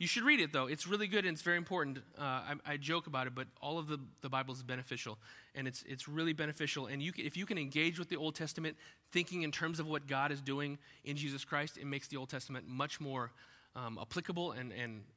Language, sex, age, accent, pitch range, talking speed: English, male, 30-49, American, 135-180 Hz, 255 wpm